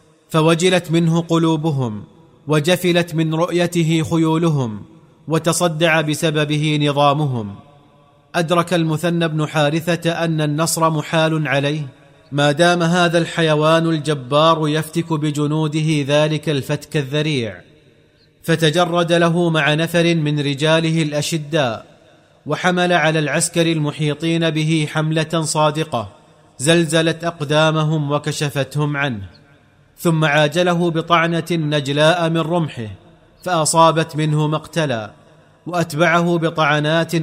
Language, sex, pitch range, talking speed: Arabic, male, 150-165 Hz, 90 wpm